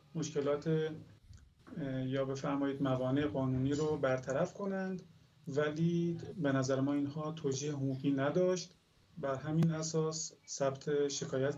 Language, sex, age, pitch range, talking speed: Persian, male, 30-49, 135-165 Hz, 110 wpm